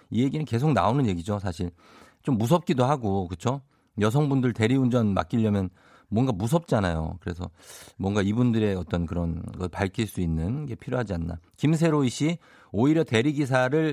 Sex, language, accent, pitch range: male, Korean, native, 95-145 Hz